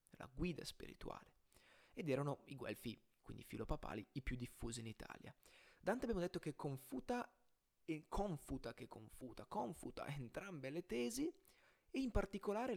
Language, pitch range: Italian, 125-190 Hz